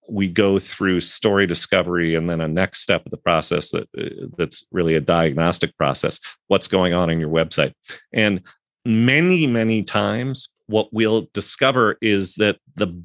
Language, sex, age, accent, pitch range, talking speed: English, male, 40-59, American, 90-115 Hz, 160 wpm